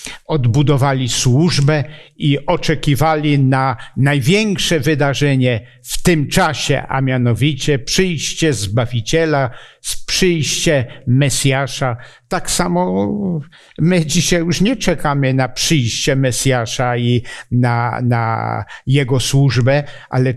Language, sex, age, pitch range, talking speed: Polish, male, 60-79, 125-155 Hz, 95 wpm